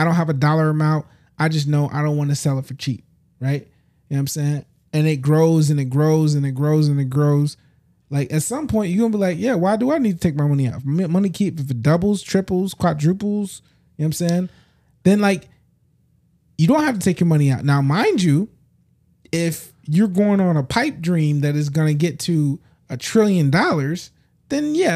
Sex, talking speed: male, 235 wpm